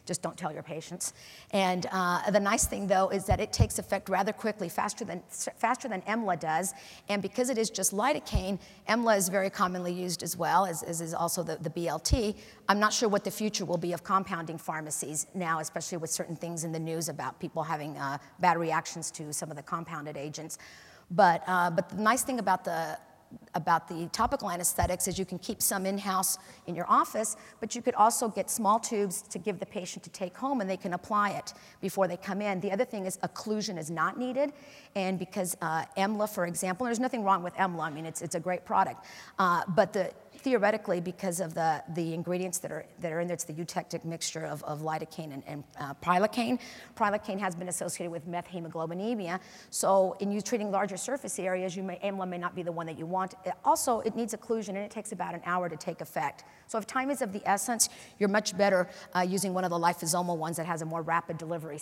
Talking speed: 225 wpm